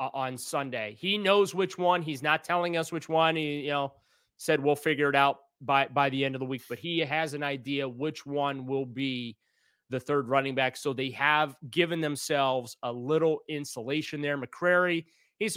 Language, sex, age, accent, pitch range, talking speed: English, male, 30-49, American, 125-150 Hz, 200 wpm